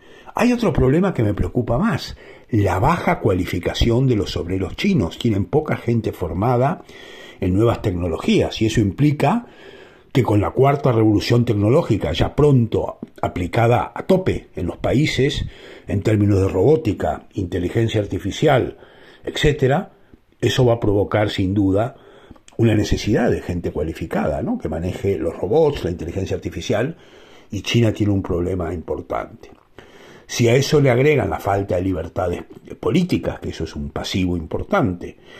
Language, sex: Spanish, male